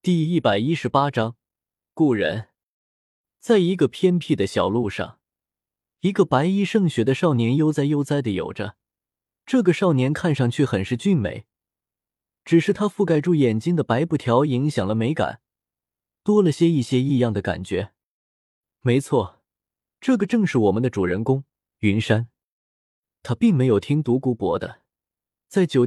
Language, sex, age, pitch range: Chinese, male, 20-39, 110-160 Hz